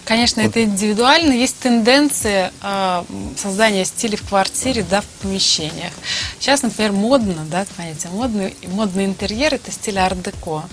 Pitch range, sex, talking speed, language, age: 175-220 Hz, female, 135 wpm, Russian, 20-39